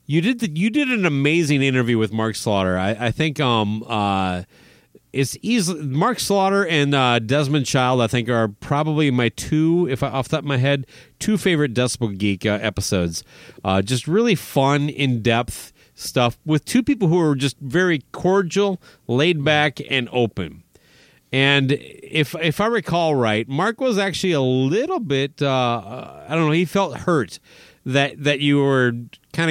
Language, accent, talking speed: English, American, 175 wpm